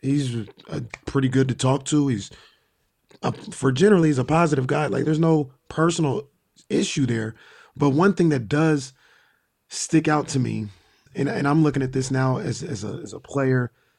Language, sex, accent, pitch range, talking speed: English, male, American, 130-165 Hz, 185 wpm